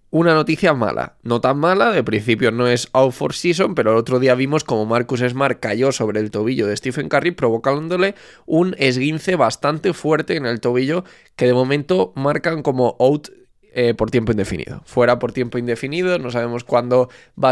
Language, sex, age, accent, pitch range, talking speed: Spanish, male, 20-39, Spanish, 115-140 Hz, 185 wpm